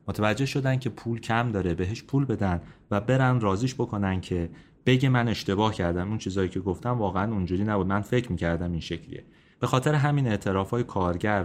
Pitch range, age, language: 90-115 Hz, 30-49, Persian